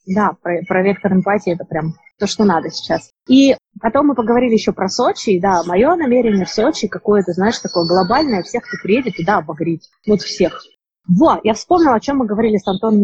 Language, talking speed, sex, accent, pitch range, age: Russian, 200 wpm, female, native, 185-245 Hz, 20-39